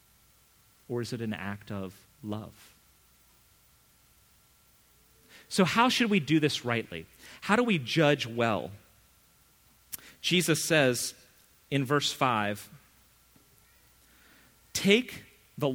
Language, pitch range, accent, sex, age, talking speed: English, 110-160 Hz, American, male, 40-59, 100 wpm